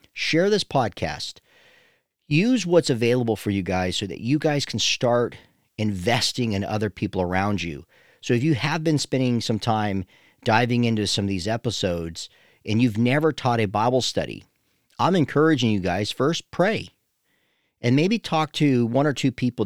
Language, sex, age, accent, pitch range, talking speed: English, male, 40-59, American, 100-145 Hz, 170 wpm